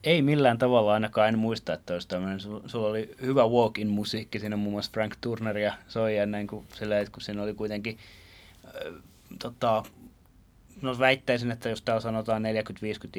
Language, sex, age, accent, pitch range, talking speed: Finnish, male, 30-49, native, 90-115 Hz, 125 wpm